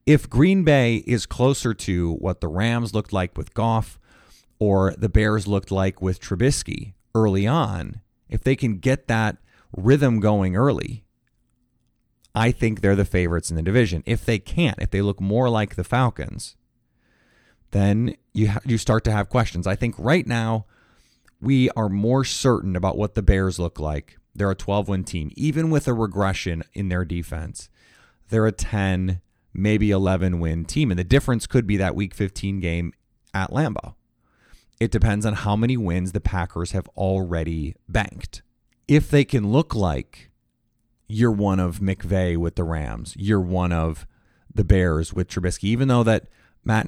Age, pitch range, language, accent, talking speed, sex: 30-49, 95-115 Hz, English, American, 170 wpm, male